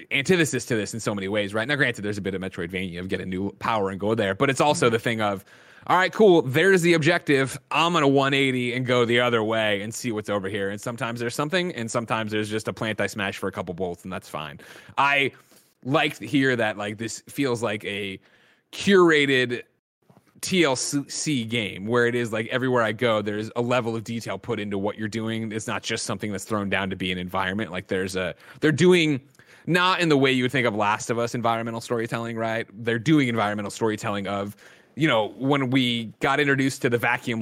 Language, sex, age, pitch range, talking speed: English, male, 30-49, 105-130 Hz, 225 wpm